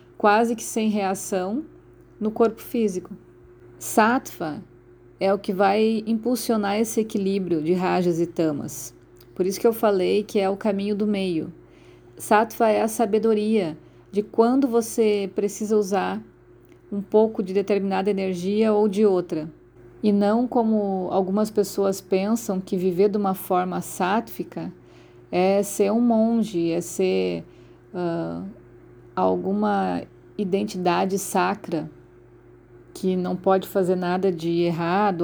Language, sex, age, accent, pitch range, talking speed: Portuguese, female, 40-59, Brazilian, 175-215 Hz, 130 wpm